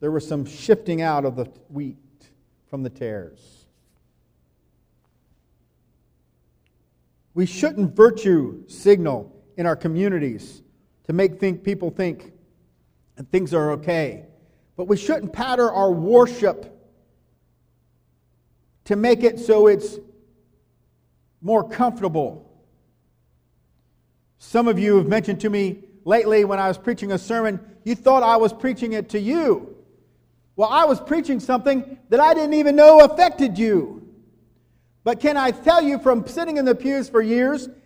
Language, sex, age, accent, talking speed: English, male, 50-69, American, 135 wpm